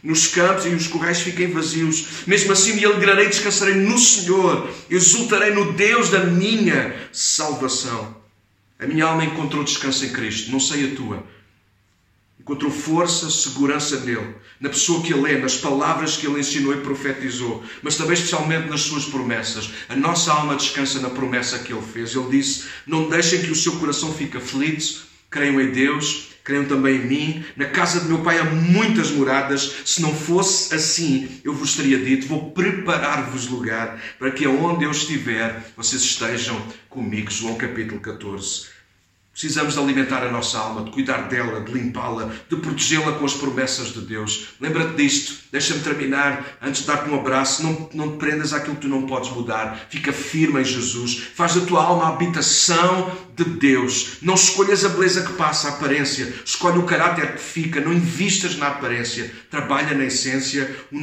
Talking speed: 175 wpm